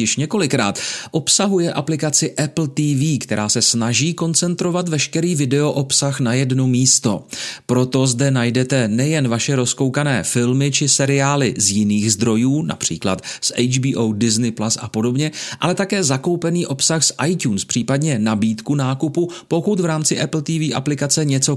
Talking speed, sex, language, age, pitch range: 140 wpm, male, Czech, 40-59, 115-145 Hz